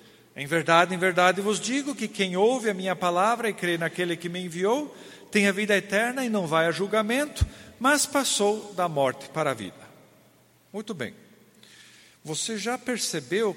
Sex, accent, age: male, Brazilian, 50-69